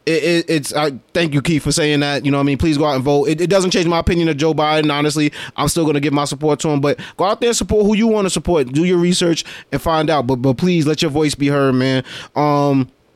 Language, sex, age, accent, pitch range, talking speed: English, male, 20-39, American, 130-155 Hz, 290 wpm